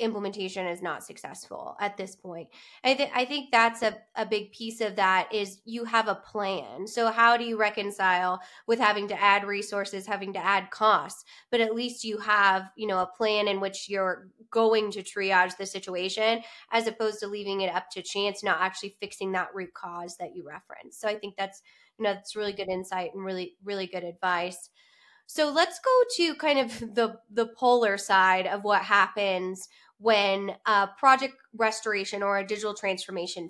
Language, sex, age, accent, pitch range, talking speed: English, female, 20-39, American, 190-225 Hz, 190 wpm